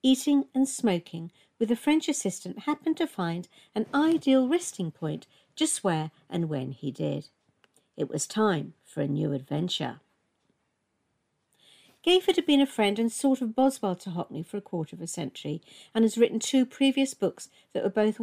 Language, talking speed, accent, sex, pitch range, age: English, 175 wpm, British, female, 175-260 Hz, 60-79